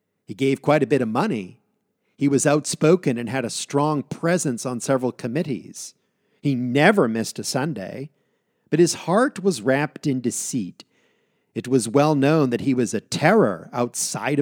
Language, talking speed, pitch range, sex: English, 165 wpm, 130-180 Hz, male